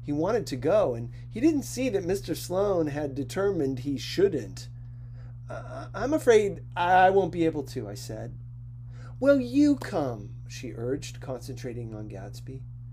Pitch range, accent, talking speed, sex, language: 120-160 Hz, American, 150 wpm, male, English